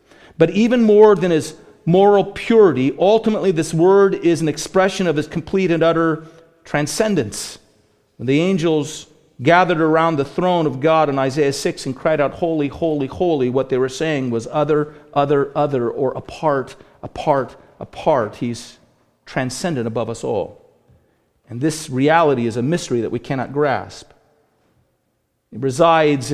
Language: English